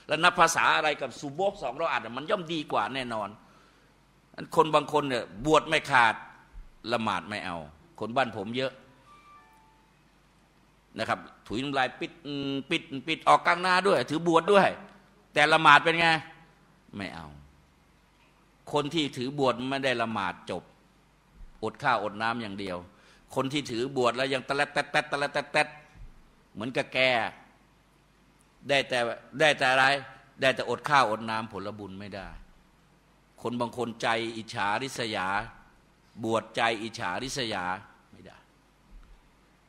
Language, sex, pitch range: Thai, male, 115-145 Hz